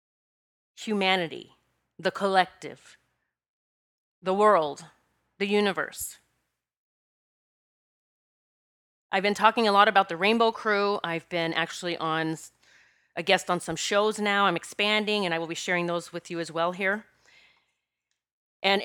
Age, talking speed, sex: 30-49, 125 wpm, female